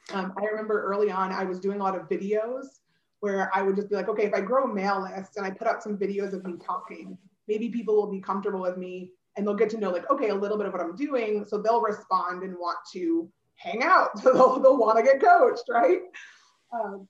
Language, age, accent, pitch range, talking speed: English, 20-39, American, 190-235 Hz, 250 wpm